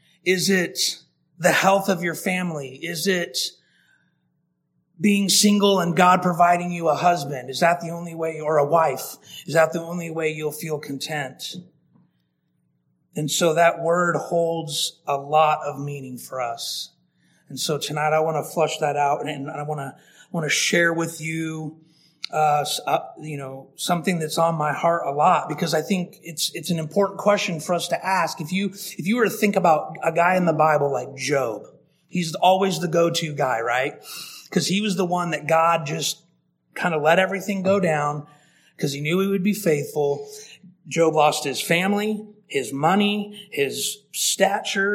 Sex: male